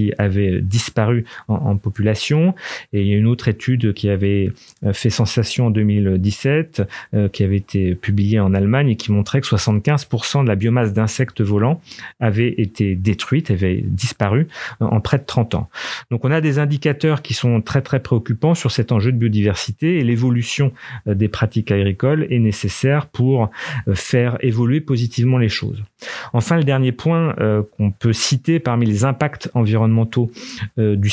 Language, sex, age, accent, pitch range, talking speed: French, male, 40-59, French, 105-135 Hz, 165 wpm